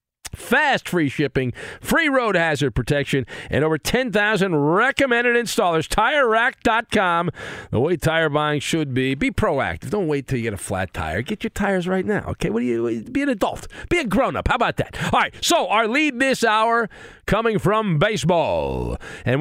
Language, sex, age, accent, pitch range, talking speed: English, male, 50-69, American, 125-190 Hz, 180 wpm